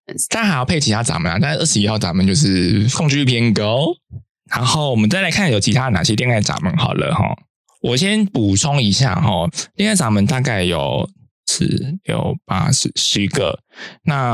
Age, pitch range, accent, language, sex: 20-39, 105-160 Hz, native, Chinese, male